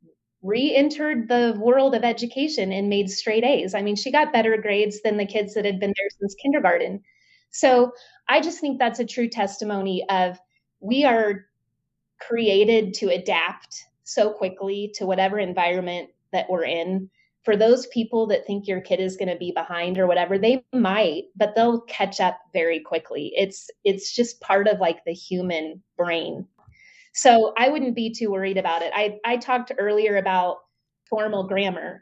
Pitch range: 185-220 Hz